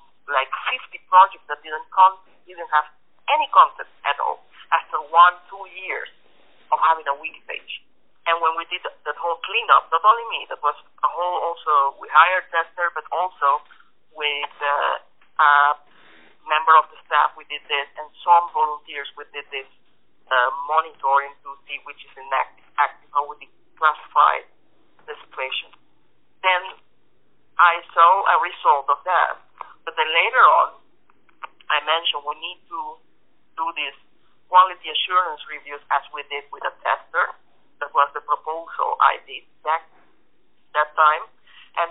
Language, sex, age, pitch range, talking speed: English, male, 50-69, 145-185 Hz, 145 wpm